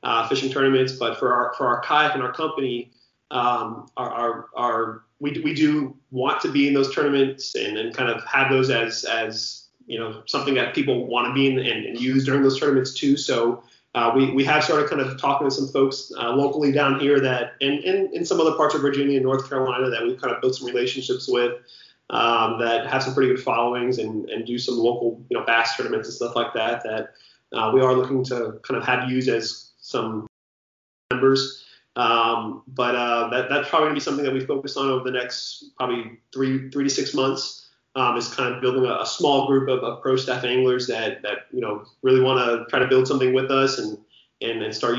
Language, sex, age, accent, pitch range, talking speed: English, male, 30-49, American, 120-135 Hz, 235 wpm